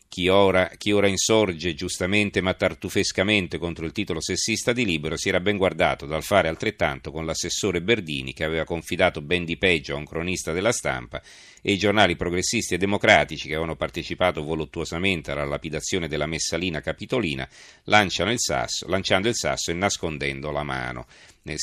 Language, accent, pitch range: Italian, native, 80-100 Hz